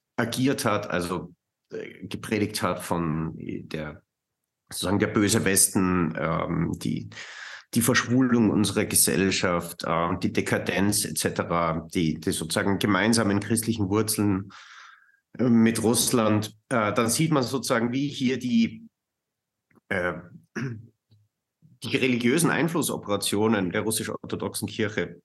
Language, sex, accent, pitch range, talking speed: German, male, German, 95-115 Hz, 100 wpm